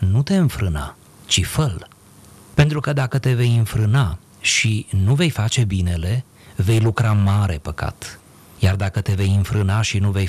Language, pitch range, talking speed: Romanian, 100-140 Hz, 165 wpm